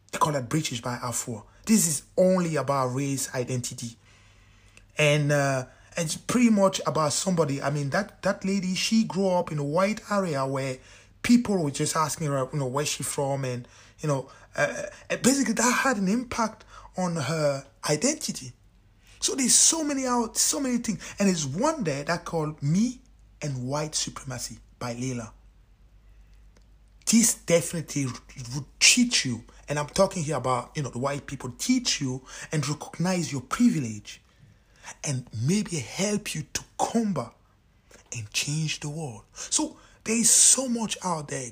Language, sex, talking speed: English, male, 160 wpm